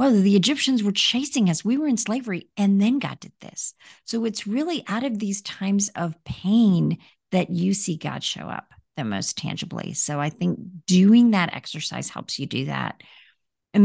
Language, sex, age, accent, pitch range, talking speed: English, female, 40-59, American, 150-210 Hz, 190 wpm